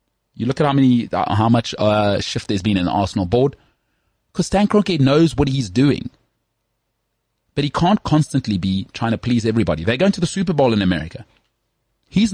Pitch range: 95-130 Hz